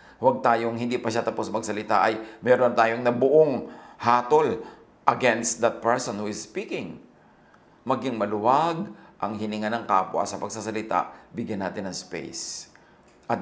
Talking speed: 140 wpm